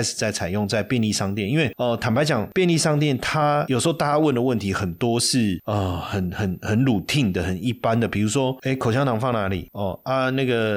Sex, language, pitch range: male, Chinese, 105-140 Hz